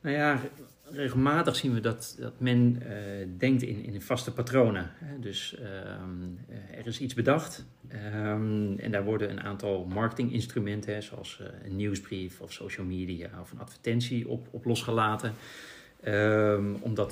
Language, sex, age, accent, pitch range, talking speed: Dutch, male, 40-59, Dutch, 100-120 Hz, 140 wpm